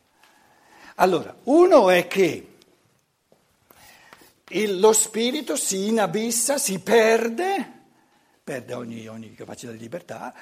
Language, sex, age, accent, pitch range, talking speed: Italian, male, 60-79, native, 145-235 Hz, 100 wpm